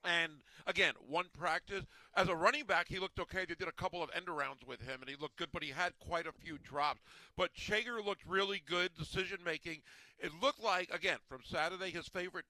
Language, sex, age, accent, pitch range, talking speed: English, male, 50-69, American, 155-180 Hz, 210 wpm